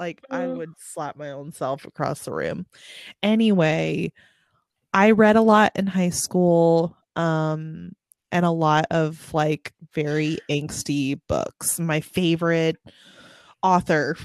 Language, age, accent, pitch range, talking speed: English, 20-39, American, 155-200 Hz, 125 wpm